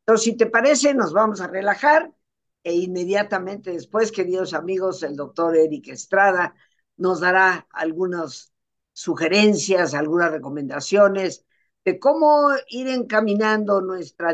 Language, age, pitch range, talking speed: Spanish, 50-69, 145-205 Hz, 115 wpm